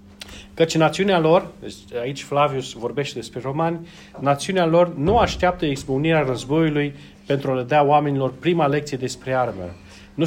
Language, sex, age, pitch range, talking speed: Romanian, male, 40-59, 125-165 Hz, 140 wpm